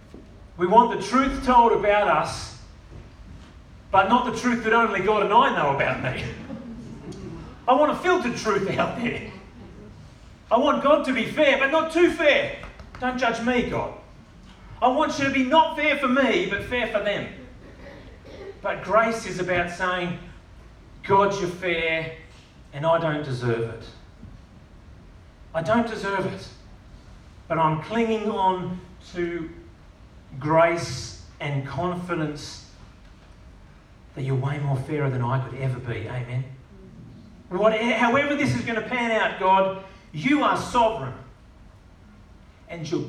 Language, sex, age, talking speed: English, male, 40-59, 140 wpm